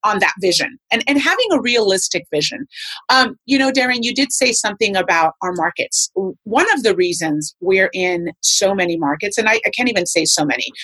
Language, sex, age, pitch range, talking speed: English, female, 30-49, 190-275 Hz, 205 wpm